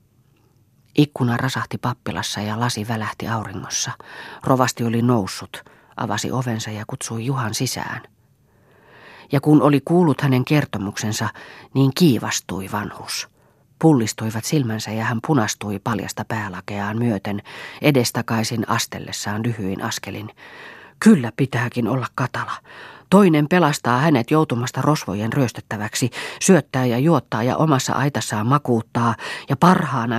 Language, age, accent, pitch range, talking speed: Finnish, 30-49, native, 110-145 Hz, 110 wpm